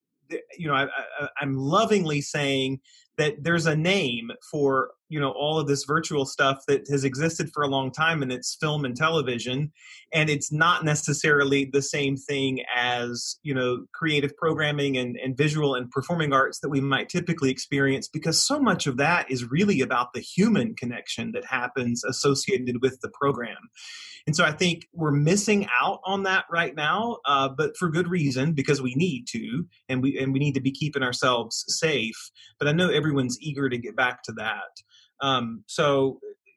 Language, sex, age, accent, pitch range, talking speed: English, male, 30-49, American, 130-165 Hz, 185 wpm